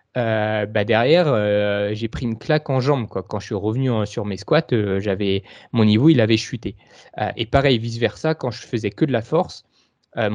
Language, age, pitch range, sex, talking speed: French, 20-39, 105-135 Hz, male, 225 wpm